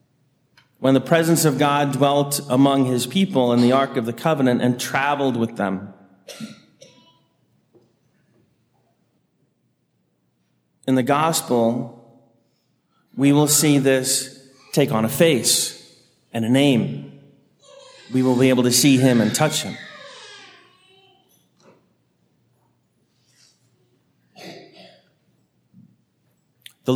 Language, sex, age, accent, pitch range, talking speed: English, male, 40-59, American, 125-140 Hz, 100 wpm